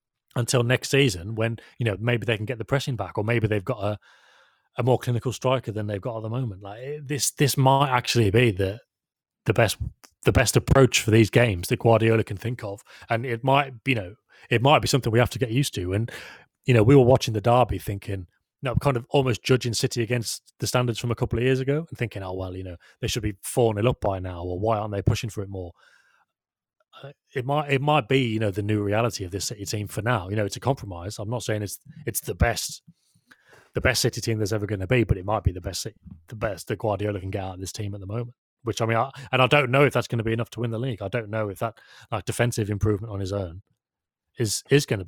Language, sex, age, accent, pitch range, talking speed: English, male, 30-49, British, 105-125 Hz, 265 wpm